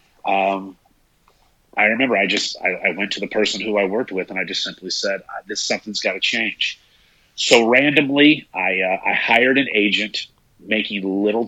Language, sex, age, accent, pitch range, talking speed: English, male, 30-49, American, 100-120 Hz, 185 wpm